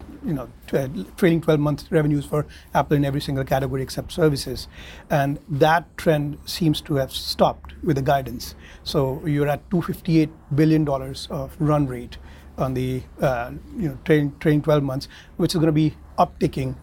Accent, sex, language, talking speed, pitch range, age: Indian, male, English, 190 wpm, 140-165 Hz, 30-49